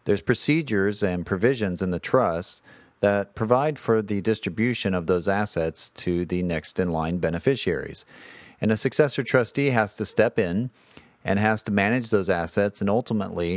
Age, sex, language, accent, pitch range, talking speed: 40-59, male, English, American, 90-110 Hz, 155 wpm